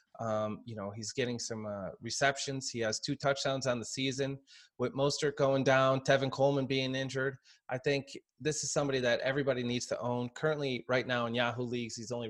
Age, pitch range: 20-39, 115-135 Hz